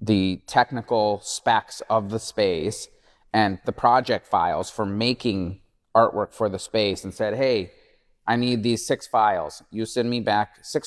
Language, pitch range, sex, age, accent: Chinese, 105-125 Hz, male, 30-49, American